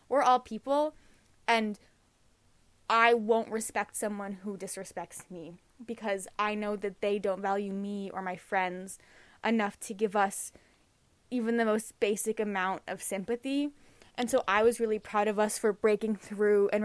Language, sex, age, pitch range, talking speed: English, female, 10-29, 200-240 Hz, 160 wpm